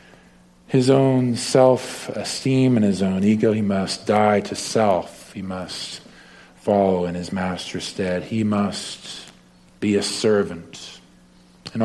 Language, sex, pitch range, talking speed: English, male, 90-110 Hz, 125 wpm